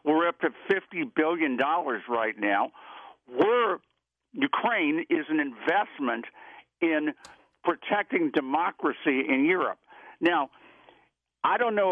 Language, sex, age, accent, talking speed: English, male, 60-79, American, 105 wpm